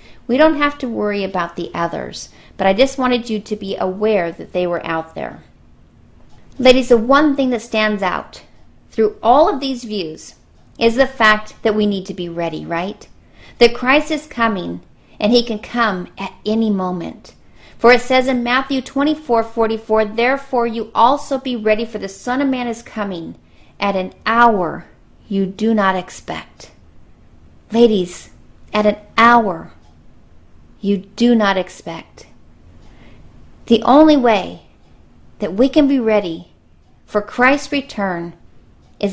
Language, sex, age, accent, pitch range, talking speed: English, female, 40-59, American, 190-250 Hz, 150 wpm